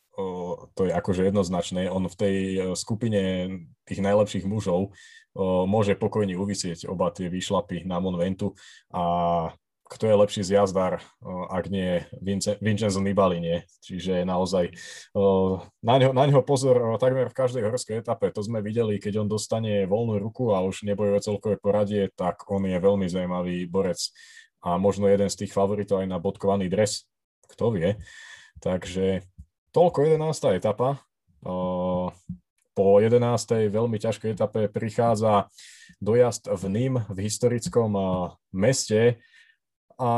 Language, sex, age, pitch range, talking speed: Slovak, male, 20-39, 95-115 Hz, 135 wpm